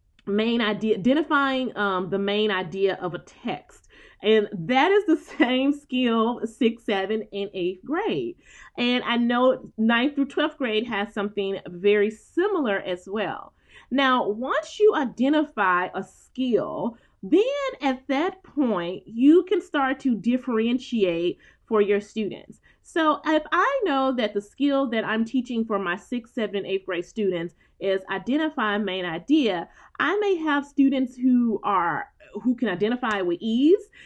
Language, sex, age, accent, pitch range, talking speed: English, female, 20-39, American, 210-285 Hz, 150 wpm